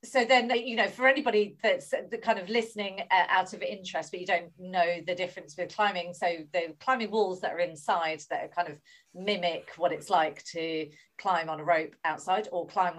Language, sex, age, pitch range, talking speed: English, female, 40-59, 165-210 Hz, 205 wpm